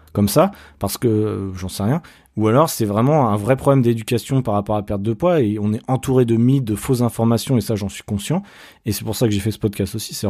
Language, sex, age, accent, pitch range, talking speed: French, male, 30-49, French, 105-120 Hz, 280 wpm